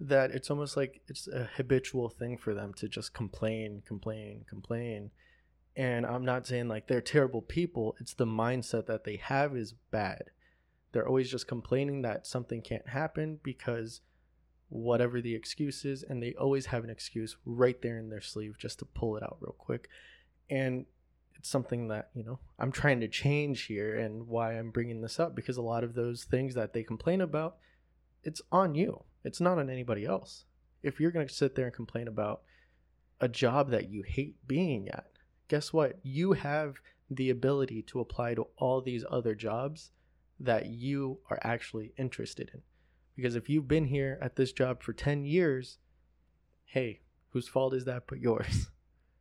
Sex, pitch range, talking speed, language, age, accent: male, 110-135 Hz, 185 wpm, English, 20-39, American